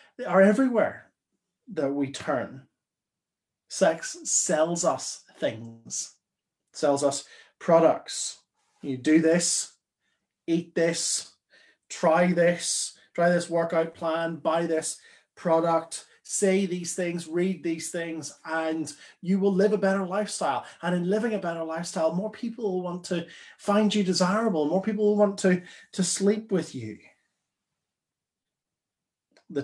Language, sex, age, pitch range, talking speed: English, male, 30-49, 140-180 Hz, 130 wpm